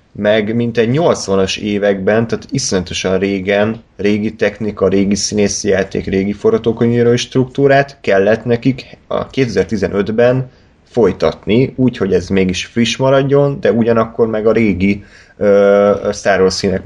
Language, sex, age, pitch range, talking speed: Hungarian, male, 30-49, 95-120 Hz, 115 wpm